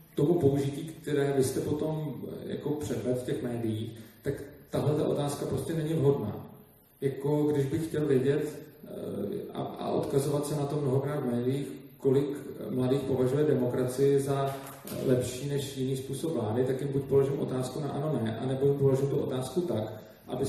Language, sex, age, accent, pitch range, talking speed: Czech, male, 40-59, native, 130-145 Hz, 160 wpm